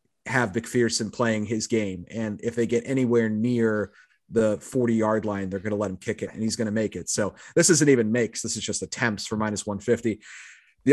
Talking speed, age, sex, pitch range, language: 235 wpm, 30-49, male, 110-130 Hz, English